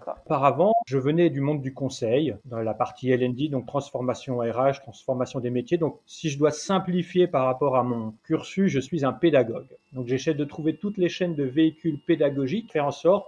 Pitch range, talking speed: 130-175 Hz, 200 wpm